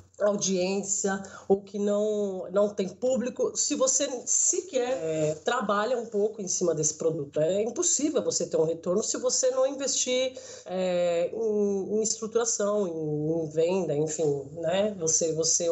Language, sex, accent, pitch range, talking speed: Portuguese, female, Brazilian, 165-240 Hz, 140 wpm